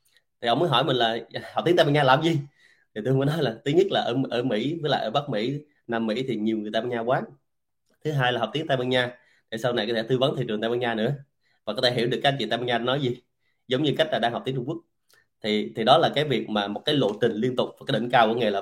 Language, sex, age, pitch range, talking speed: Vietnamese, male, 20-39, 115-135 Hz, 325 wpm